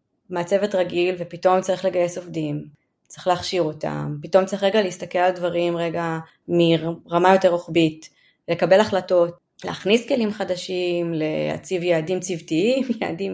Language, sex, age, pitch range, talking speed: Hebrew, female, 20-39, 175-225 Hz, 125 wpm